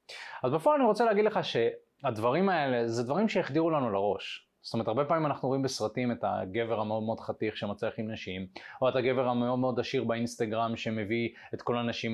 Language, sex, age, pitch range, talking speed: Hebrew, male, 20-39, 120-170 Hz, 185 wpm